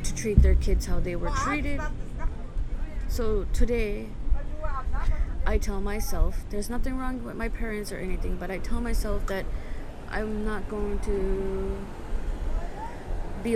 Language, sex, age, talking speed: French, female, 20-39, 135 wpm